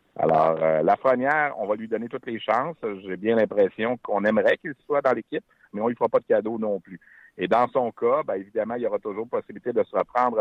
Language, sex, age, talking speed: French, male, 60-79, 250 wpm